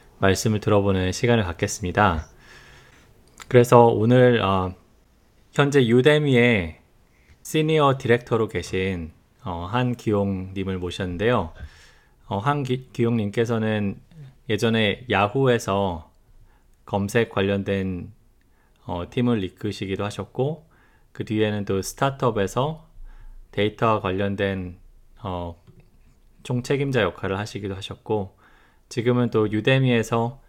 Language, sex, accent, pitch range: Korean, male, native, 95-120 Hz